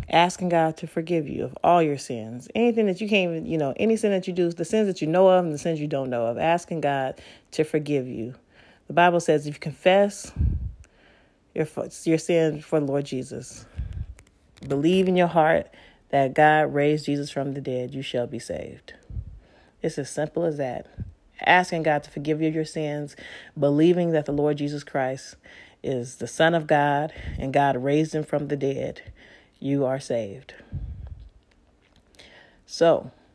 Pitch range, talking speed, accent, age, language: 140-170 Hz, 180 wpm, American, 30-49, English